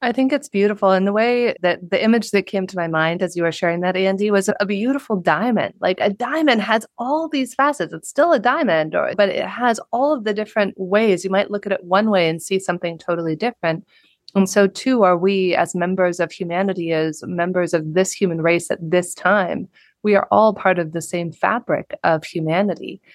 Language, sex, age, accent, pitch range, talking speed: English, female, 30-49, American, 165-205 Hz, 220 wpm